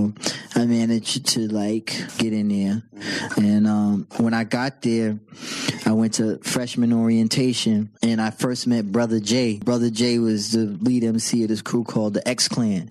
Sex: male